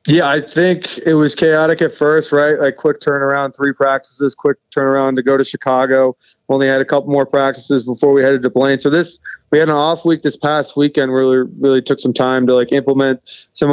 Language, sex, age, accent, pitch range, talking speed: English, male, 20-39, American, 125-140 Hz, 225 wpm